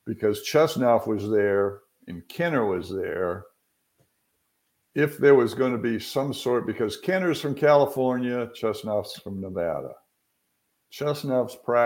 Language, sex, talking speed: English, male, 120 wpm